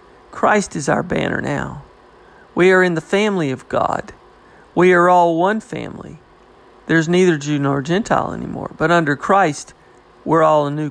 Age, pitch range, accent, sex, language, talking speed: 40-59, 155-200 Hz, American, male, English, 165 wpm